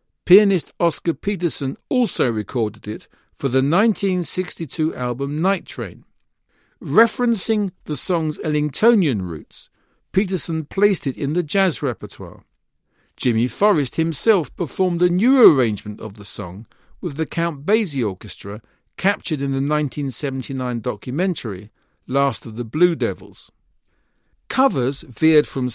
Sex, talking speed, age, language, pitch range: male, 120 wpm, 50-69, English, 120-180 Hz